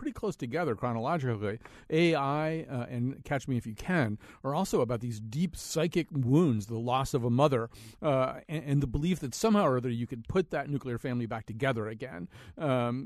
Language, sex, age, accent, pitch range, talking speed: English, male, 40-59, American, 120-160 Hz, 195 wpm